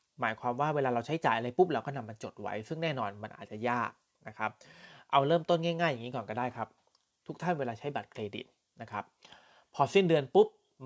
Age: 20-39